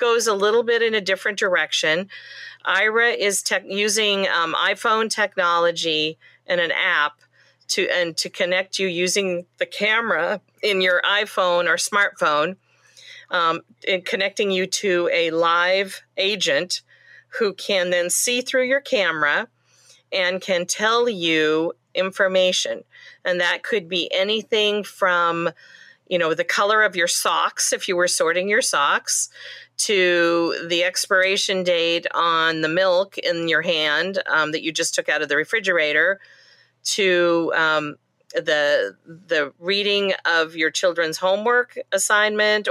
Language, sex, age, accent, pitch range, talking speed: English, female, 40-59, American, 170-220 Hz, 140 wpm